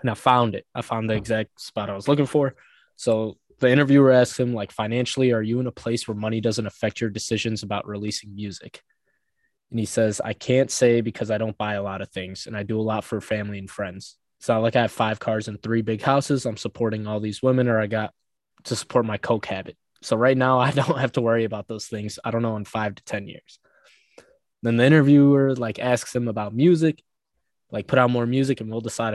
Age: 20-39